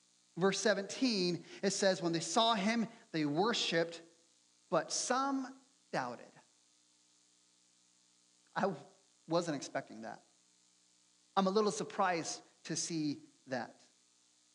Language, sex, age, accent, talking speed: English, male, 30-49, American, 100 wpm